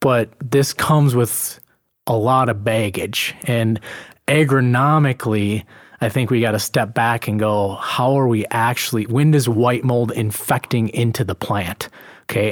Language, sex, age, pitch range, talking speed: English, male, 30-49, 110-140 Hz, 155 wpm